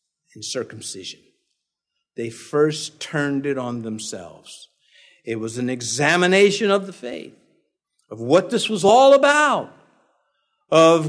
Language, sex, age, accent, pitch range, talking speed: English, male, 50-69, American, 145-230 Hz, 115 wpm